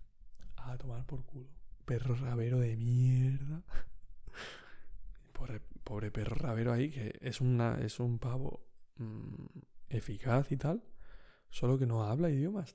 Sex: male